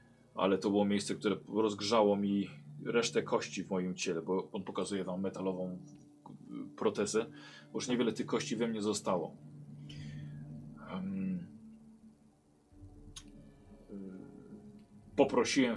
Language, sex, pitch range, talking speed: Polish, male, 95-110 Hz, 105 wpm